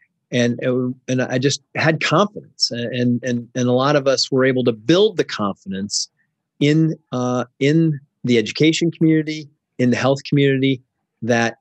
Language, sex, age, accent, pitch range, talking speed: English, male, 30-49, American, 125-155 Hz, 160 wpm